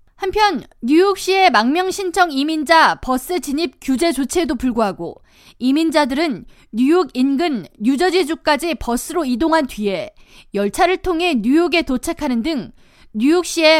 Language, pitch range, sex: Korean, 250-340 Hz, female